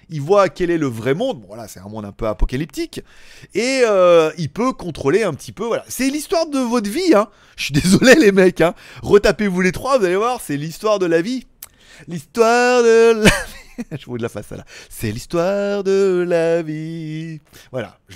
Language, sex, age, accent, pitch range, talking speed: French, male, 30-49, French, 135-210 Hz, 210 wpm